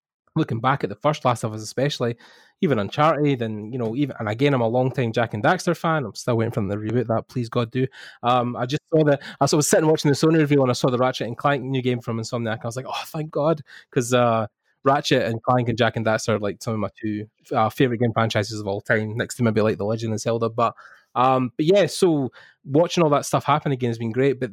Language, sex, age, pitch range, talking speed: English, male, 20-39, 115-140 Hz, 270 wpm